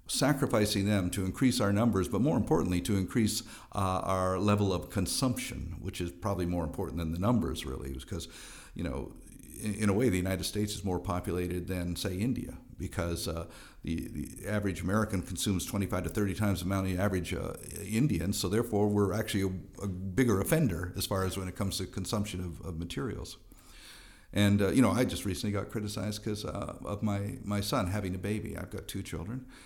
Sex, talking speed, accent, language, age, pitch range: male, 200 wpm, American, English, 50-69, 90-110 Hz